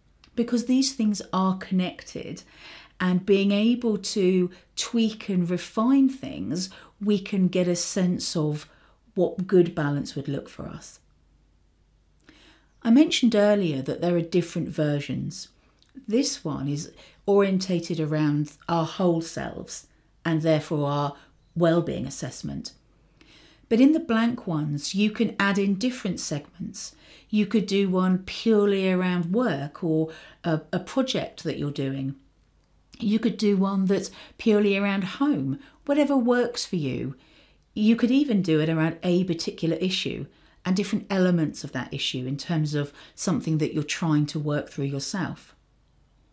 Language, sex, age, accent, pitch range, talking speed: English, female, 40-59, British, 155-205 Hz, 140 wpm